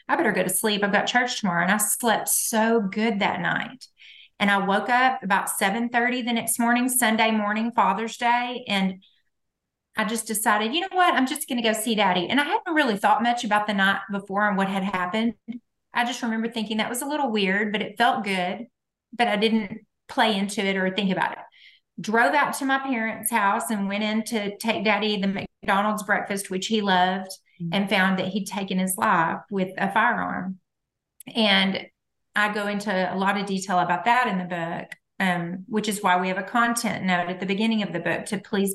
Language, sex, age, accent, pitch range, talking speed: English, female, 30-49, American, 190-235 Hz, 215 wpm